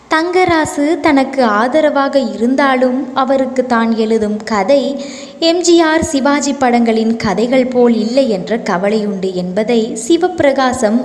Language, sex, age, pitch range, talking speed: Tamil, female, 20-39, 215-280 Hz, 100 wpm